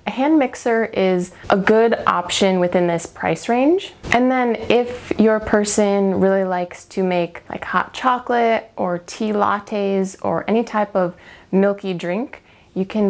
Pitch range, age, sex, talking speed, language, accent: 180-220 Hz, 20-39, female, 155 wpm, English, American